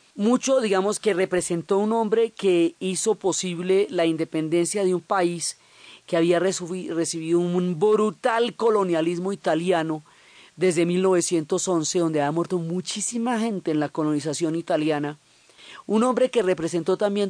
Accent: Colombian